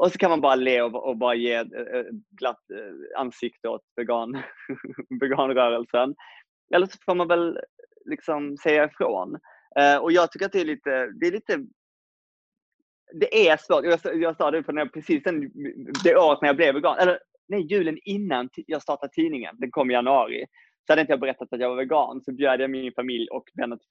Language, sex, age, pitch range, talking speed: Swedish, male, 20-39, 135-200 Hz, 200 wpm